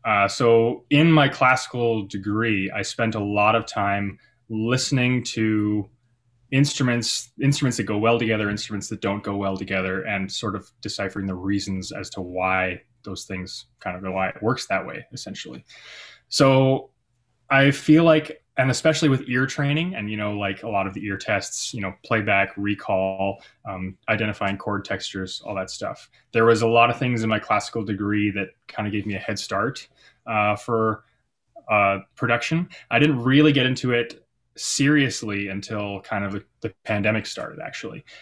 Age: 20-39